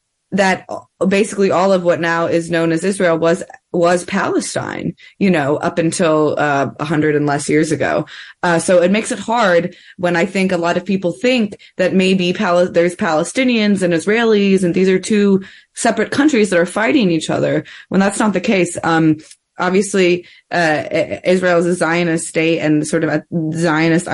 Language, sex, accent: English, female, American